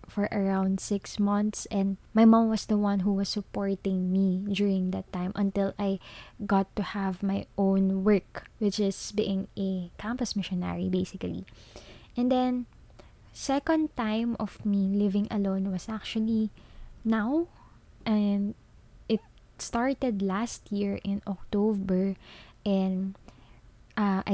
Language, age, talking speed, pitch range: Filipino, 20-39, 130 wpm, 190-215 Hz